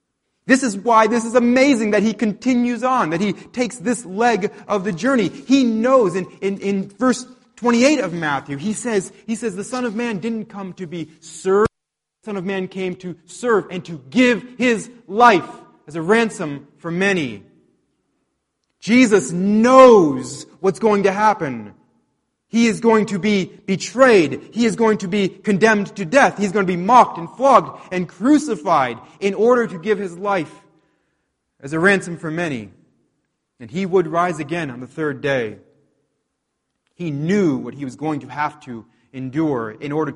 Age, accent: 30-49, American